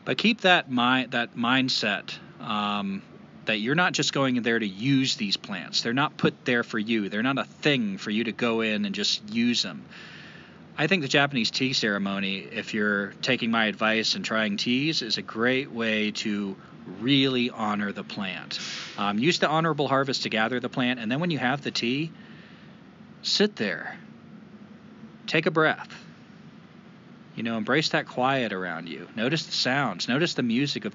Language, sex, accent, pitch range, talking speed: English, male, American, 110-180 Hz, 185 wpm